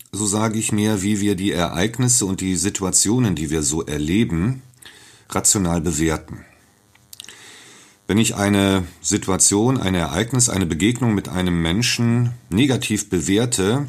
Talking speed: 130 wpm